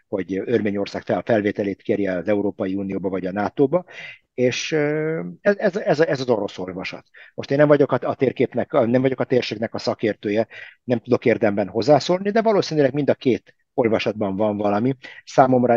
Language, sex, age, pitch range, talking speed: Hungarian, male, 50-69, 100-125 Hz, 165 wpm